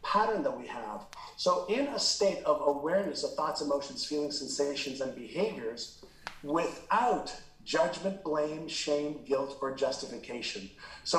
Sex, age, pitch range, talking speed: male, 50-69, 145-195 Hz, 135 wpm